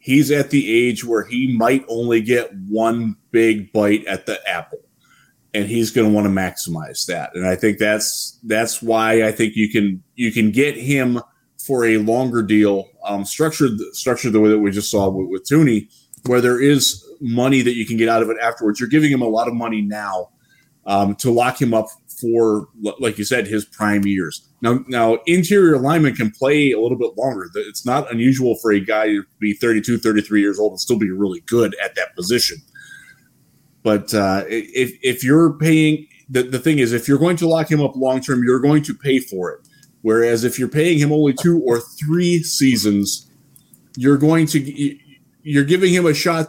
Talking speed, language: 205 wpm, English